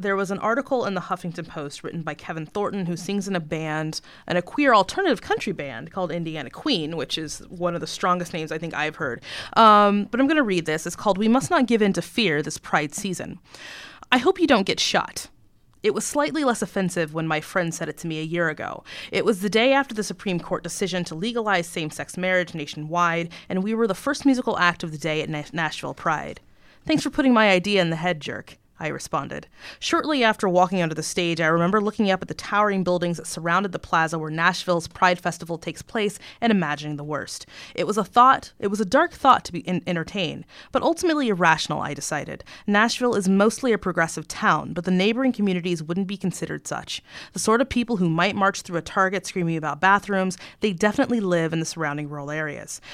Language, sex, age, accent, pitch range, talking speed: English, female, 30-49, American, 165-215 Hz, 220 wpm